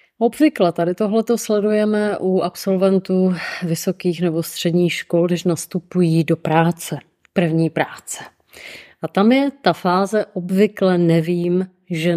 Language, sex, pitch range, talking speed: Czech, female, 165-190 Hz, 125 wpm